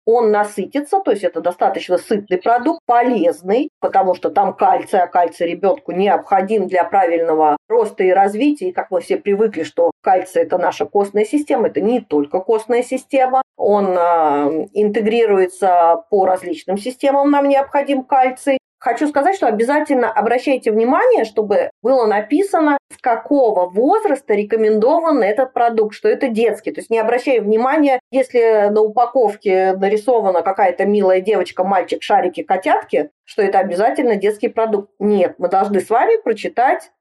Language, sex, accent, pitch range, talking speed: Russian, female, native, 185-255 Hz, 145 wpm